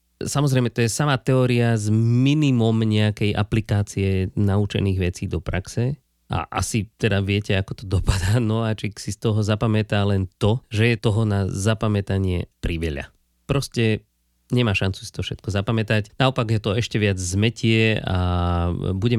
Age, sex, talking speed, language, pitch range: 20-39, male, 155 wpm, Slovak, 95-120 Hz